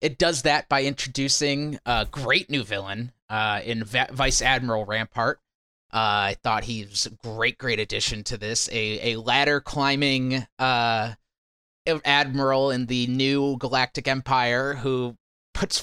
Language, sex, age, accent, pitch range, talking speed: English, male, 20-39, American, 115-145 Hz, 140 wpm